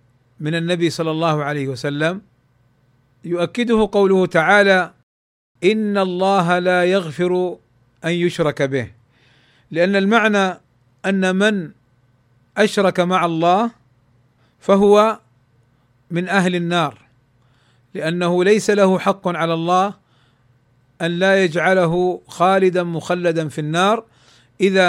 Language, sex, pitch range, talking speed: Arabic, male, 130-190 Hz, 100 wpm